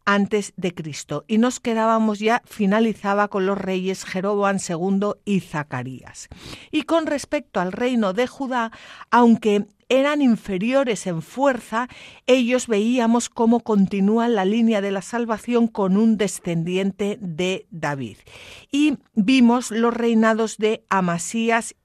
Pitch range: 200-245 Hz